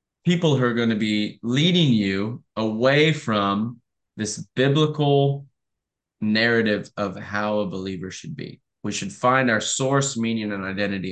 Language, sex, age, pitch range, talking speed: English, male, 20-39, 100-125 Hz, 145 wpm